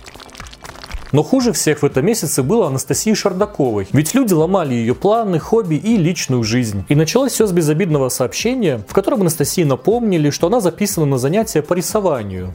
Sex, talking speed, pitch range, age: male, 165 wpm, 135-200 Hz, 30-49